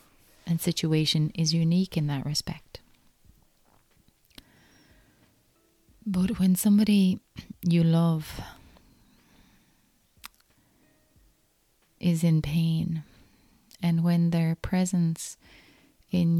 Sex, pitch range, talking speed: female, 165-185 Hz, 75 wpm